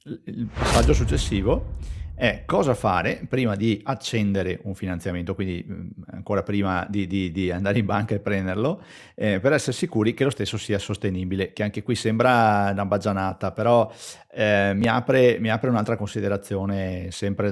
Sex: male